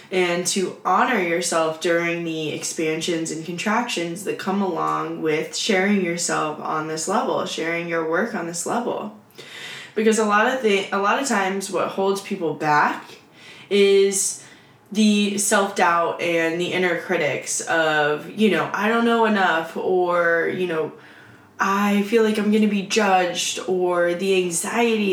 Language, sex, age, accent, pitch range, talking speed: English, female, 10-29, American, 170-215 Hz, 155 wpm